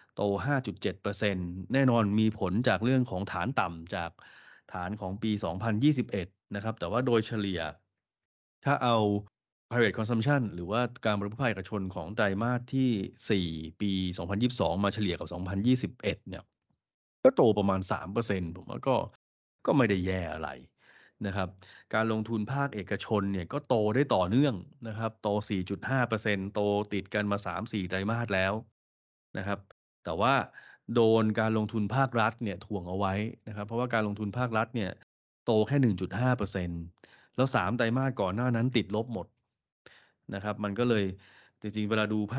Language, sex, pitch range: Thai, male, 95-115 Hz